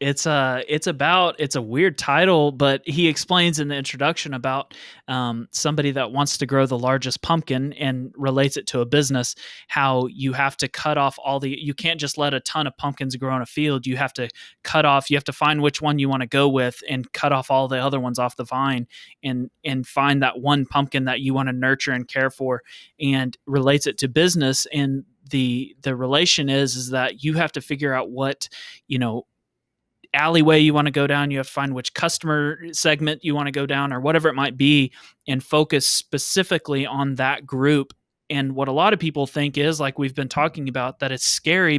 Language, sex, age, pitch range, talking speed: English, male, 20-39, 130-150 Hz, 225 wpm